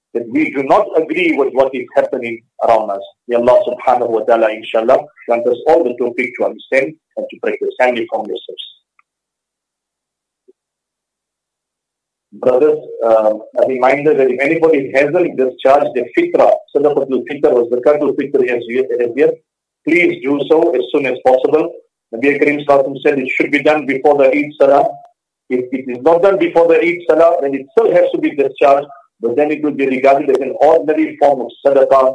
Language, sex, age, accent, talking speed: English, male, 50-69, Indian, 185 wpm